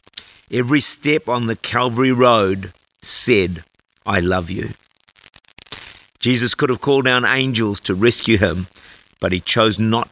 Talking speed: 135 wpm